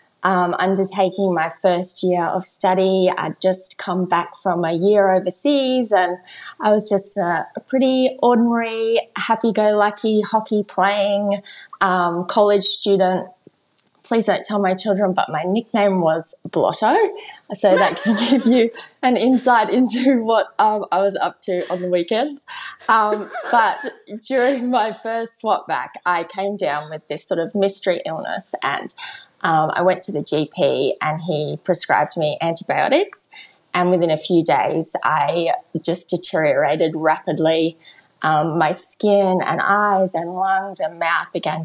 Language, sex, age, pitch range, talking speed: English, female, 20-39, 170-215 Hz, 145 wpm